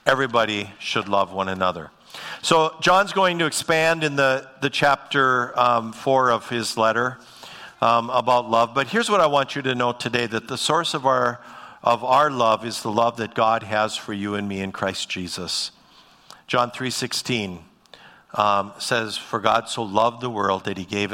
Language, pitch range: English, 100-125 Hz